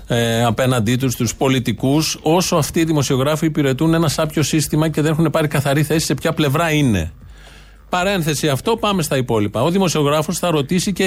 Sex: male